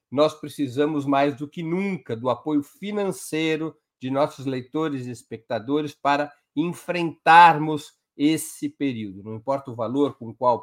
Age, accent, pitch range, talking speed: 50-69, Brazilian, 130-155 Hz, 140 wpm